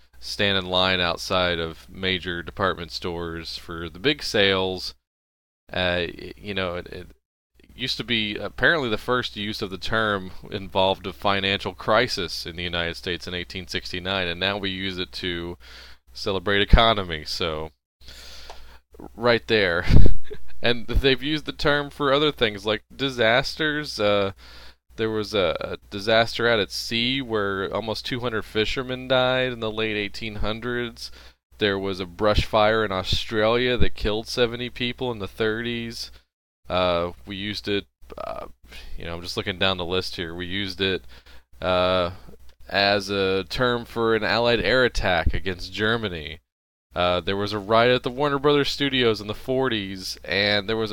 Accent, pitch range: American, 85-110 Hz